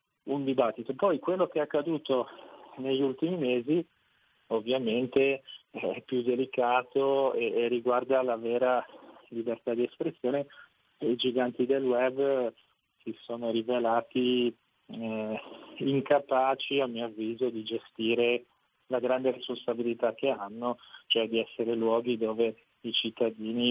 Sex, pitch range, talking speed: male, 115-135 Hz, 120 wpm